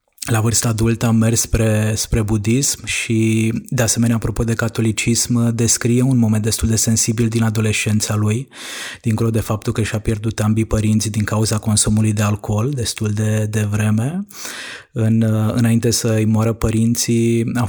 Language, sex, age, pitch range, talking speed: Romanian, male, 20-39, 105-115 Hz, 155 wpm